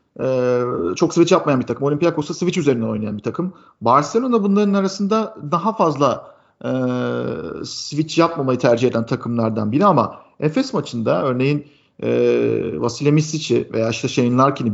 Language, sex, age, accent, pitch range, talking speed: Turkish, male, 50-69, native, 120-155 Hz, 145 wpm